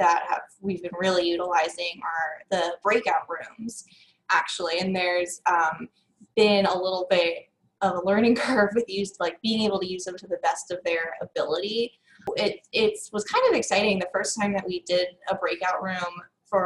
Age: 20-39